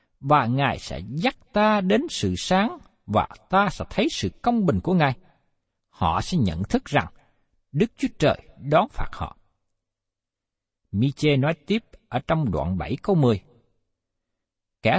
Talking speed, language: 150 wpm, Vietnamese